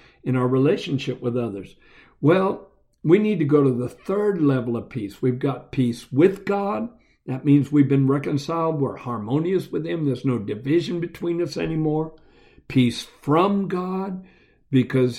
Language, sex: English, male